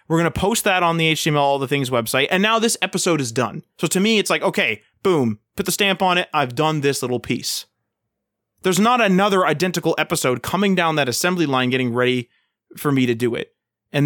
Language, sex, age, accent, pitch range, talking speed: English, male, 20-39, American, 130-175 Hz, 225 wpm